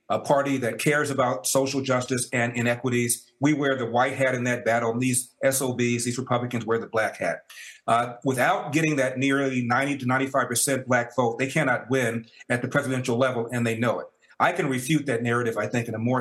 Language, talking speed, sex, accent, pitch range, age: English, 205 wpm, male, American, 120-135 Hz, 40-59